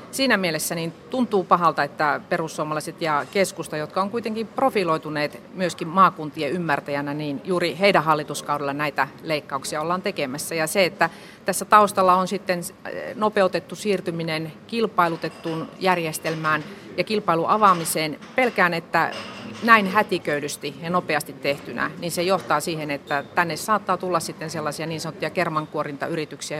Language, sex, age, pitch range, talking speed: Finnish, female, 40-59, 150-185 Hz, 130 wpm